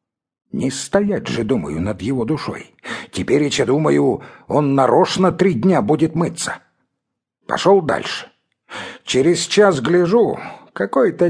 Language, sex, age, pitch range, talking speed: English, male, 60-79, 160-220 Hz, 120 wpm